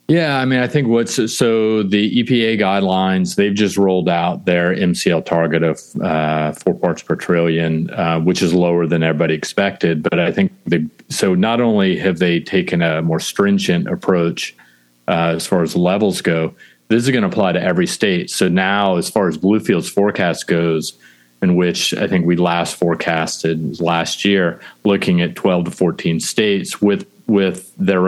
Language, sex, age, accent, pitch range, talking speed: English, male, 40-59, American, 80-100 Hz, 175 wpm